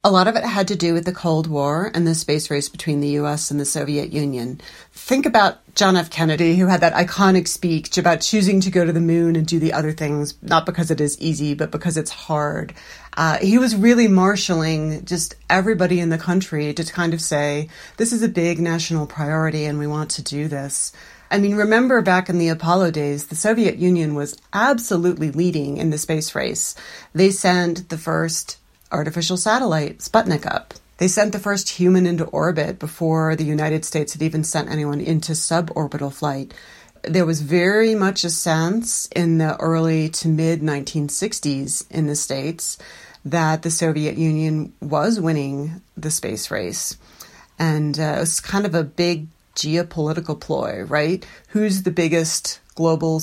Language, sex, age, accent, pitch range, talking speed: English, female, 40-59, American, 155-180 Hz, 180 wpm